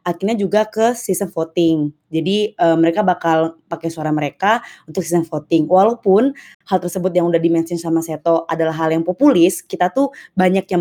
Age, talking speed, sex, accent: 20-39, 170 wpm, female, native